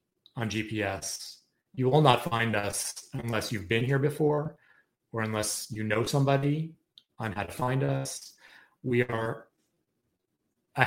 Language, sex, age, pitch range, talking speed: English, male, 30-49, 105-130 Hz, 140 wpm